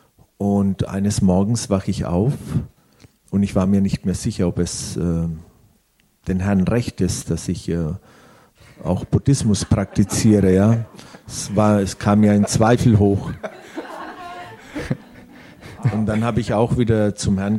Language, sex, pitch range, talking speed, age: German, male, 95-115 Hz, 150 wpm, 50-69